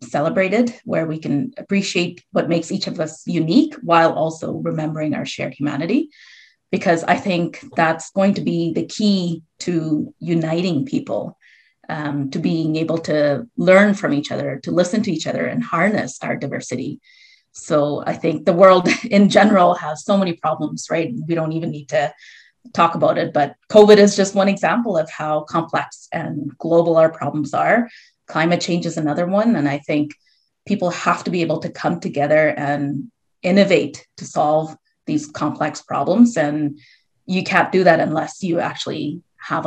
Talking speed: 170 wpm